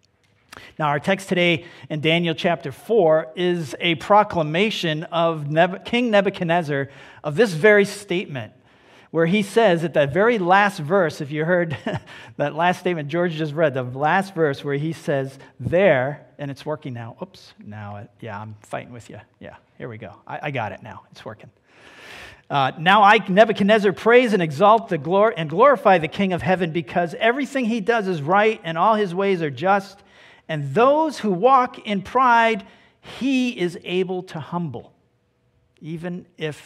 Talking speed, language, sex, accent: 170 wpm, English, male, American